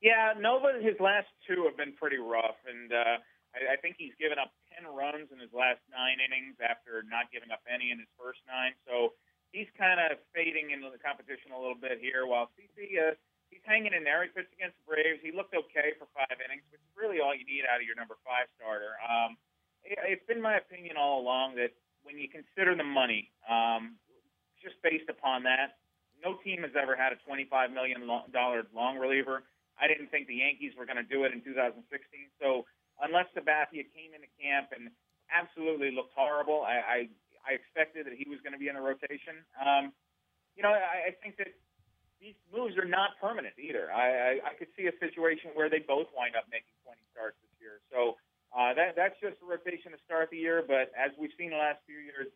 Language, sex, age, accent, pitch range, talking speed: English, male, 30-49, American, 125-165 Hz, 210 wpm